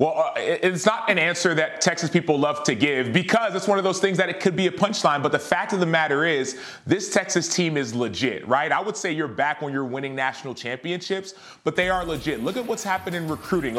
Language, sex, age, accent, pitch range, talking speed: English, male, 30-49, American, 140-185 Hz, 245 wpm